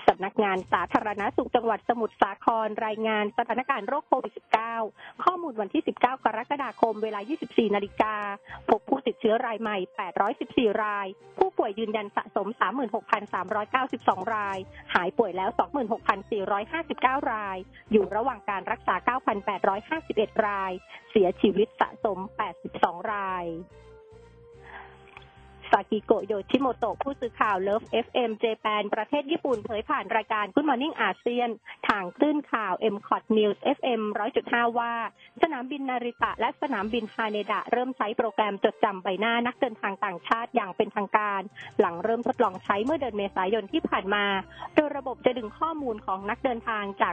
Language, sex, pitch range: Thai, female, 205-245 Hz